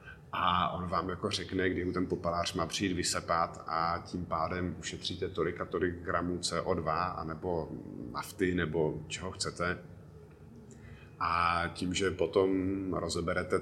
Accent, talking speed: native, 130 wpm